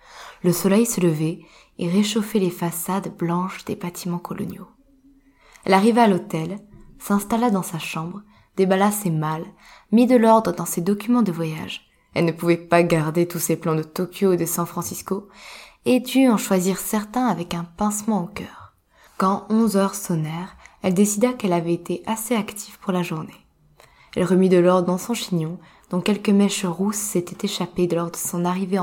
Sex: female